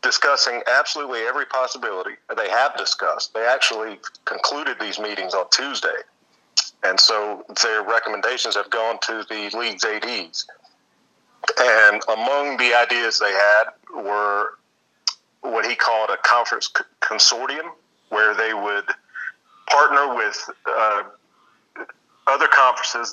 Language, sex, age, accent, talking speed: English, male, 40-59, American, 115 wpm